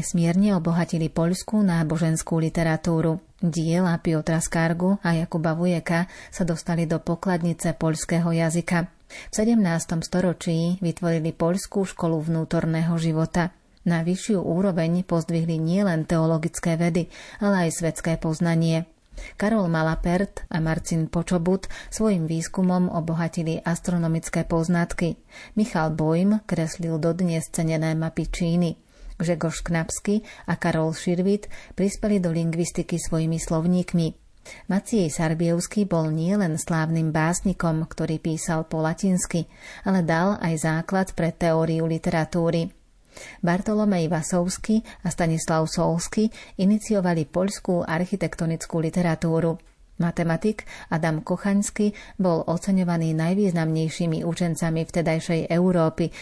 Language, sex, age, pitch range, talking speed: Slovak, female, 30-49, 165-180 Hz, 105 wpm